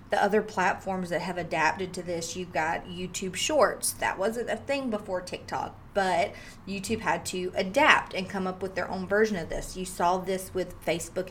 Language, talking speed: English, 195 wpm